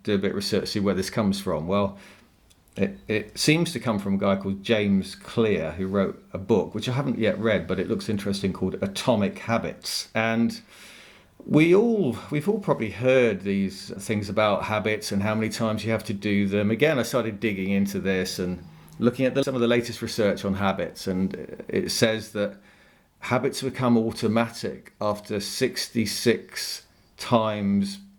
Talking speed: 185 wpm